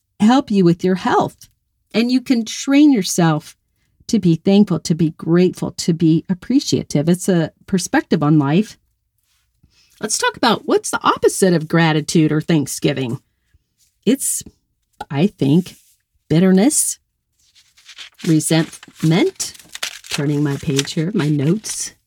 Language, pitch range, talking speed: English, 145-190 Hz, 120 wpm